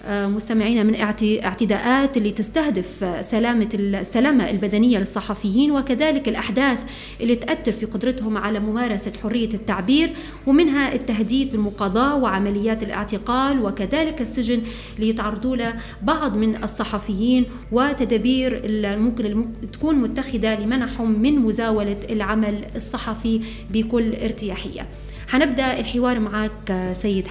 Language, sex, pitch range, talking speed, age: Arabic, female, 210-245 Hz, 105 wpm, 30-49